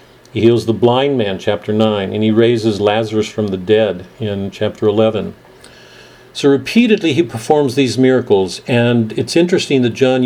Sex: male